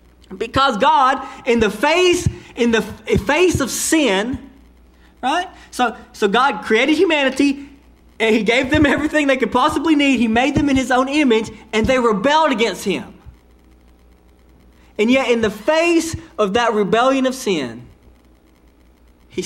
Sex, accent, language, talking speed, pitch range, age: male, American, English, 150 wpm, 185-290 Hz, 30-49